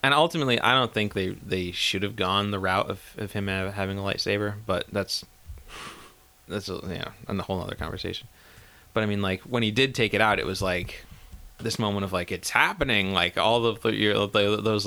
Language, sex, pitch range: English, male, 95-115 Hz